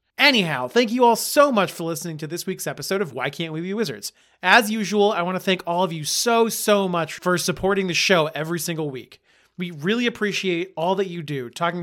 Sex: male